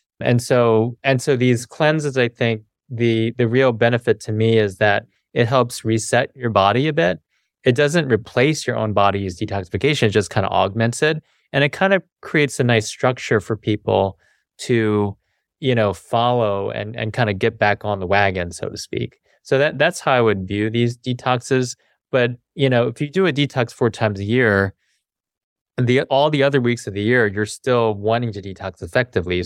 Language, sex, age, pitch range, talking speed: English, male, 20-39, 100-125 Hz, 200 wpm